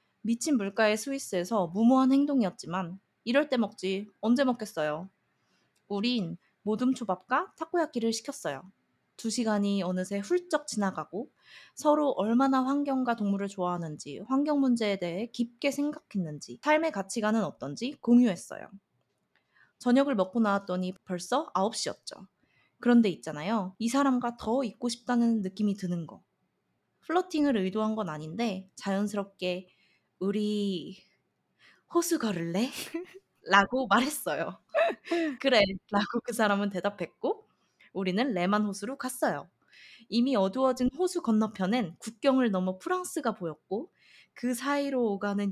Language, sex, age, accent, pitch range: Korean, female, 20-39, native, 195-265 Hz